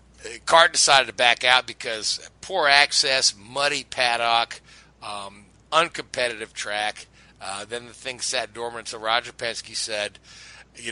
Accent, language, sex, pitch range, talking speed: American, English, male, 110-130 Hz, 135 wpm